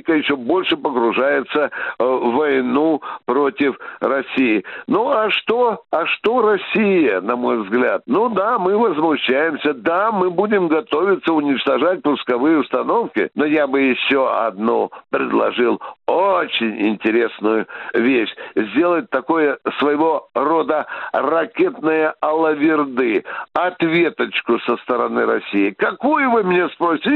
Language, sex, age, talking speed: Russian, male, 60-79, 110 wpm